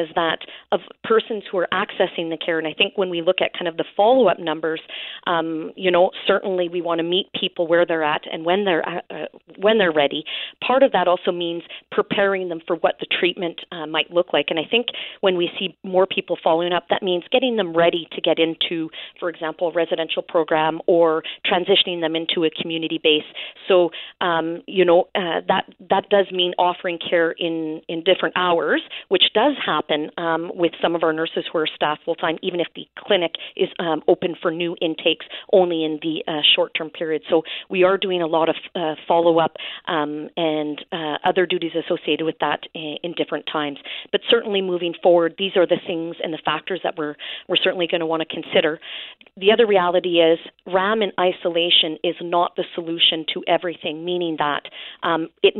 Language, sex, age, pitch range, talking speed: English, female, 40-59, 160-185 Hz, 200 wpm